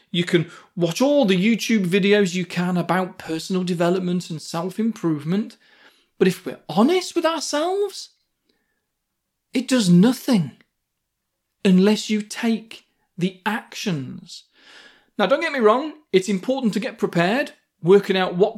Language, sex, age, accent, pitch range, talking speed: English, male, 40-59, British, 180-250 Hz, 130 wpm